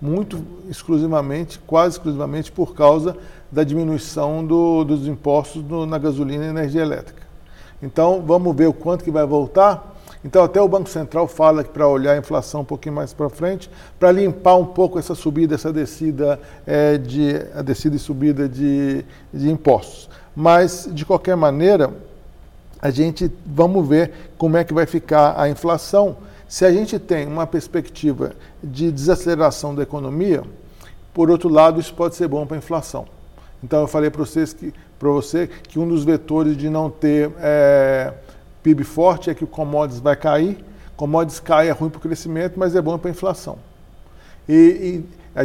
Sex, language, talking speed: male, English, 170 wpm